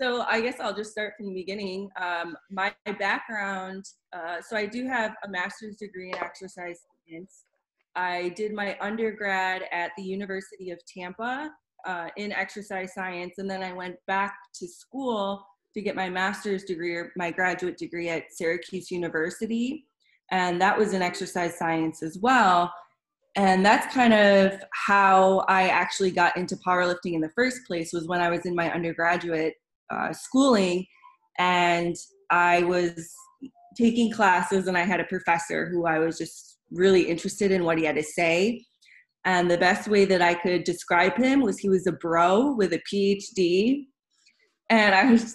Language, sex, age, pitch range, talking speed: English, female, 20-39, 175-215 Hz, 170 wpm